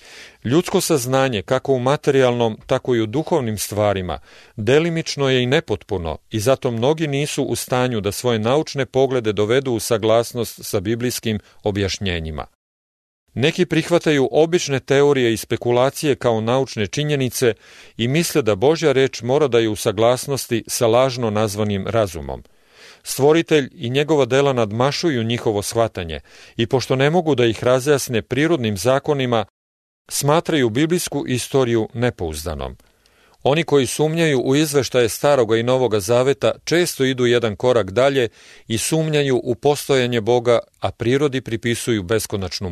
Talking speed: 135 wpm